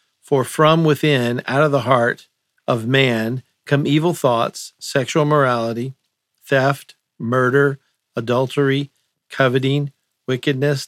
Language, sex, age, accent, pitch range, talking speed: English, male, 50-69, American, 120-145 Hz, 105 wpm